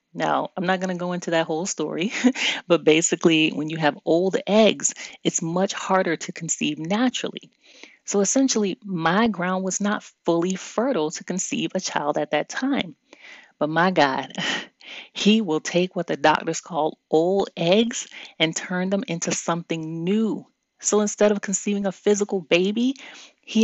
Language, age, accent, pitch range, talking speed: English, 30-49, American, 165-215 Hz, 160 wpm